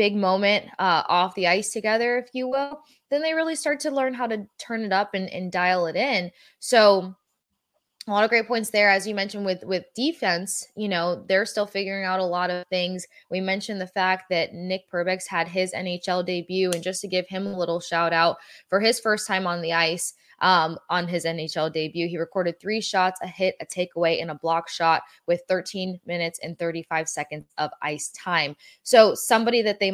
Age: 20-39